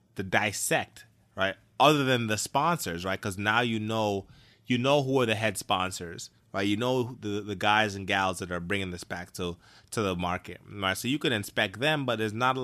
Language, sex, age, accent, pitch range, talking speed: English, male, 20-39, American, 105-130 Hz, 220 wpm